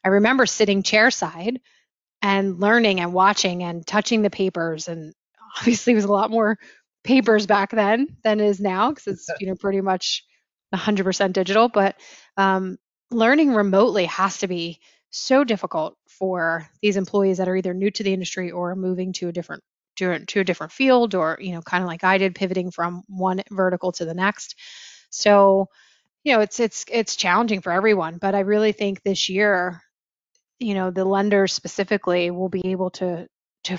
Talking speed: 180 wpm